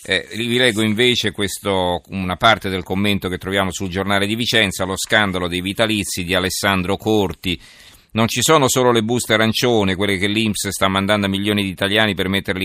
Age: 40-59